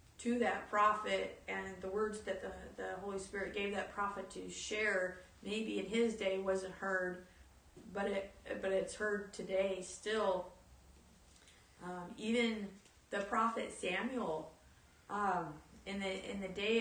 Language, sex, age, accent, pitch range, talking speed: English, female, 30-49, American, 185-210 Hz, 145 wpm